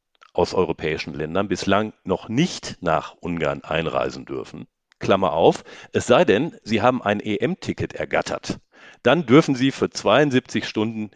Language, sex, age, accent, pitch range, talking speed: German, male, 50-69, German, 95-120 Hz, 140 wpm